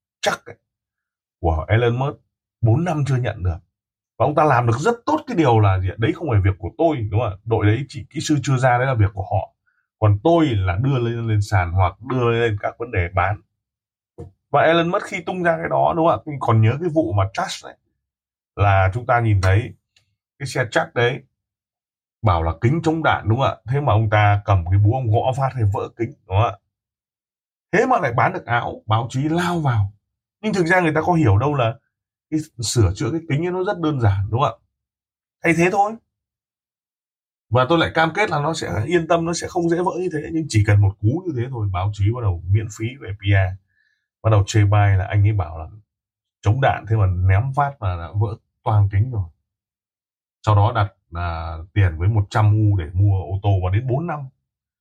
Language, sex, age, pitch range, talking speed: Vietnamese, male, 20-39, 100-140 Hz, 225 wpm